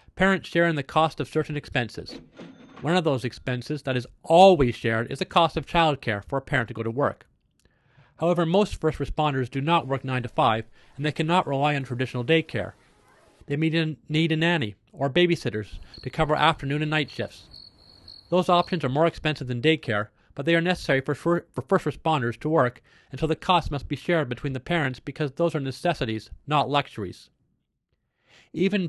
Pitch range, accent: 125-160 Hz, American